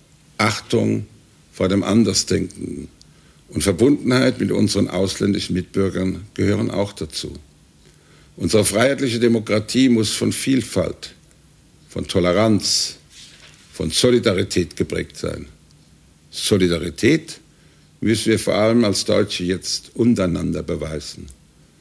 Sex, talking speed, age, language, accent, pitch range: male, 95 wpm, 70-89, Dutch, German, 85-110 Hz